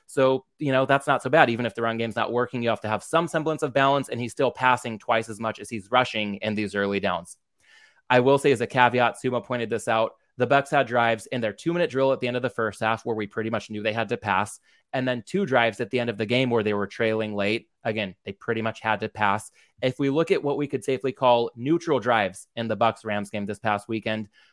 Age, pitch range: 20-39, 110-130 Hz